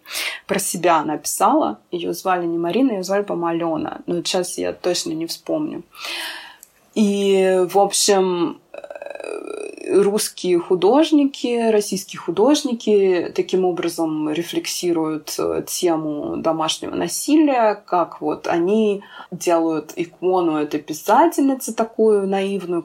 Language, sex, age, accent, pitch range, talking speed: Russian, female, 20-39, native, 170-225 Hz, 100 wpm